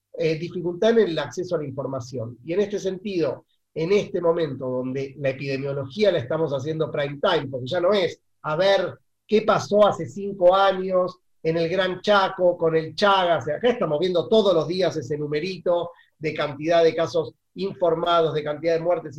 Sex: male